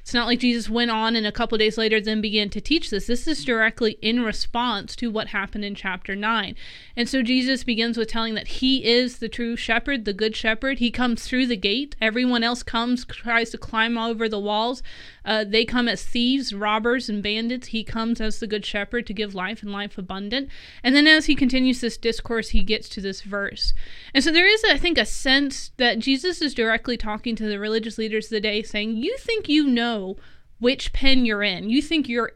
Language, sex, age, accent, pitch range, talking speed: English, female, 20-39, American, 220-265 Hz, 225 wpm